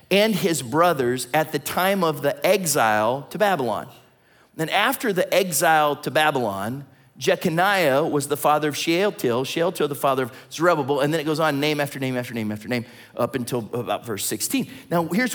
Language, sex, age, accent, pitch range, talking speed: English, male, 40-59, American, 140-200 Hz, 185 wpm